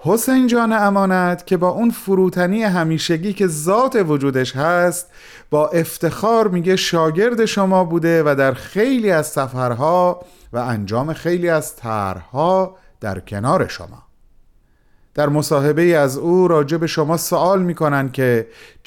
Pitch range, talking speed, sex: 125-180 Hz, 130 wpm, male